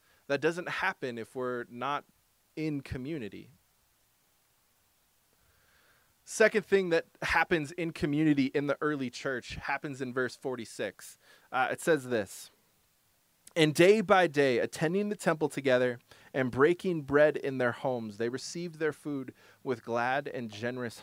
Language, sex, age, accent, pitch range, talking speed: English, male, 20-39, American, 130-175 Hz, 135 wpm